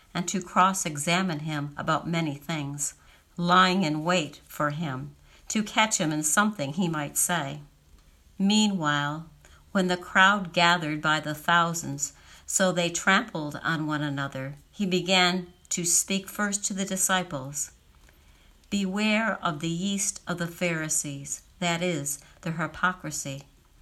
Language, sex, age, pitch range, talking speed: English, female, 60-79, 145-180 Hz, 135 wpm